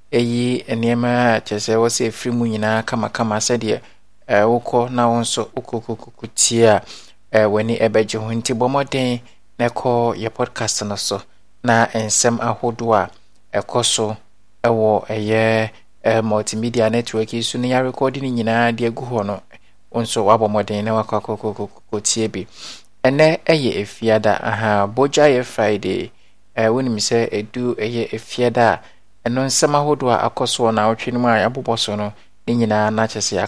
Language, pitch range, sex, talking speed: English, 105-120 Hz, male, 145 wpm